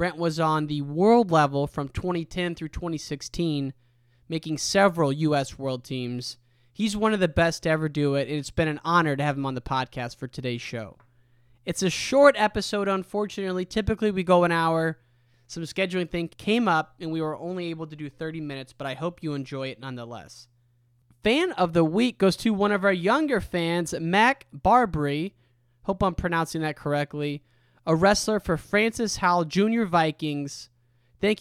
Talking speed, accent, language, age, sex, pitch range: 180 wpm, American, English, 20-39, male, 135-195 Hz